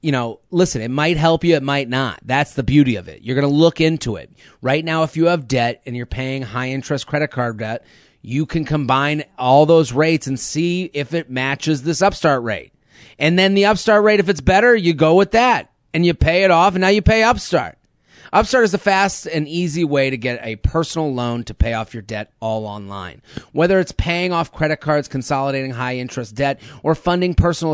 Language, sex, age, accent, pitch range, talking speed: English, male, 30-49, American, 130-165 Hz, 220 wpm